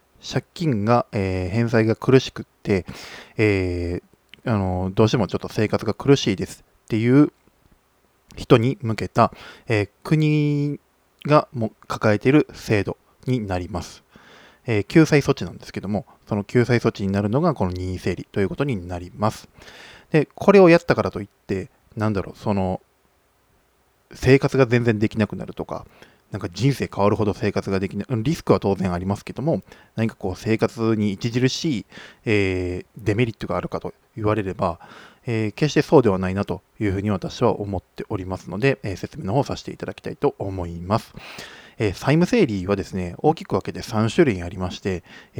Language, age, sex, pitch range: Japanese, 20-39, male, 95-130 Hz